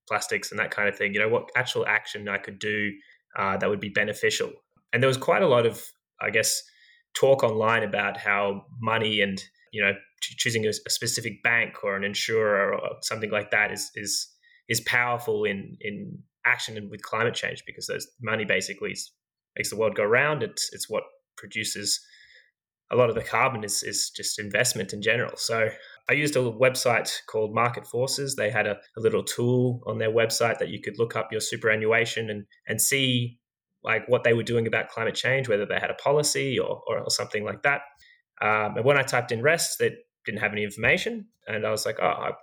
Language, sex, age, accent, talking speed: English, male, 10-29, Australian, 205 wpm